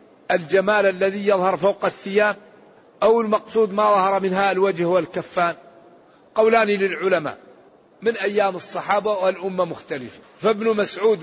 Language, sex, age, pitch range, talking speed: Arabic, male, 60-79, 165-205 Hz, 110 wpm